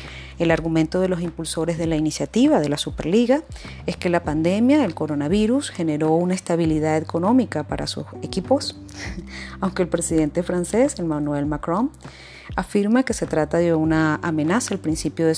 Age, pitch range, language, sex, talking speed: 30-49, 150-185 Hz, Spanish, female, 155 wpm